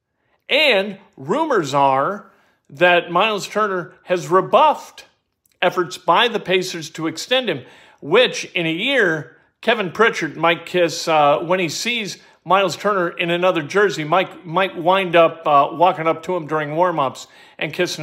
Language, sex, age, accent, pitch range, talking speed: English, male, 50-69, American, 165-215 Hz, 155 wpm